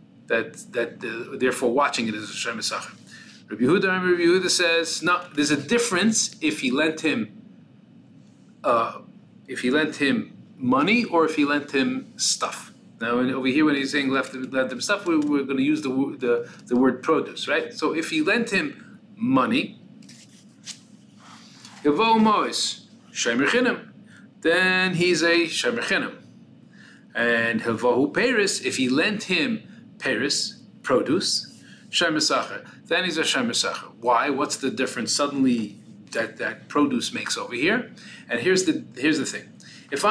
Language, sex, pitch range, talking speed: English, male, 130-205 Hz, 145 wpm